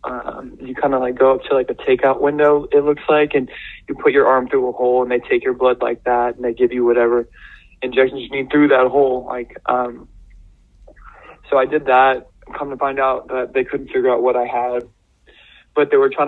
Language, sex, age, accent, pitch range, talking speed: English, male, 20-39, American, 130-150 Hz, 230 wpm